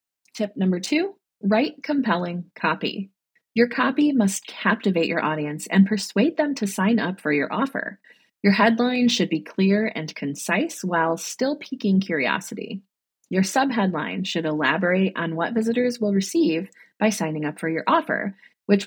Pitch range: 165-235 Hz